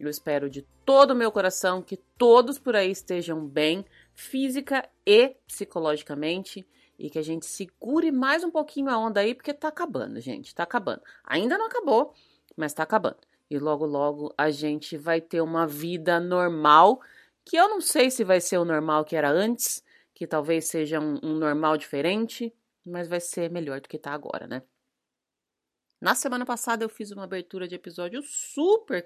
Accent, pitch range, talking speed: Brazilian, 155-245 Hz, 180 wpm